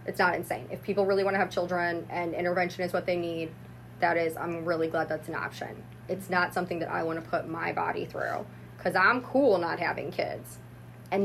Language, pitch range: English, 175-230 Hz